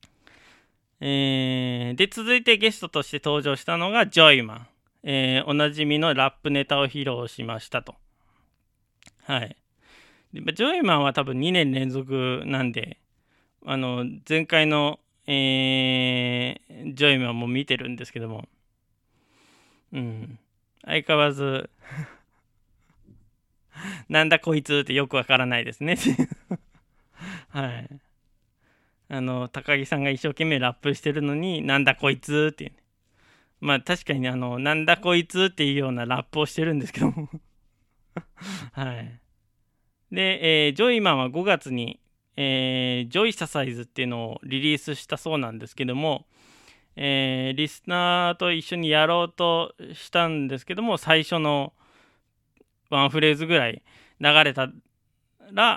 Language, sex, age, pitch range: Japanese, male, 20-39, 125-155 Hz